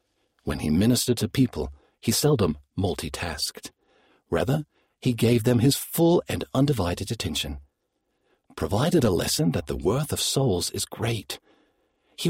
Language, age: English, 50-69